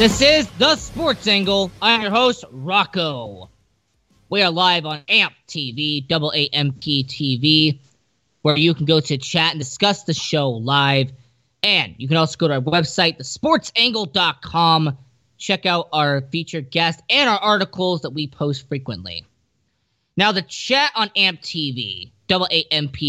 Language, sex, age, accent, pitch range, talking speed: English, male, 20-39, American, 140-205 Hz, 145 wpm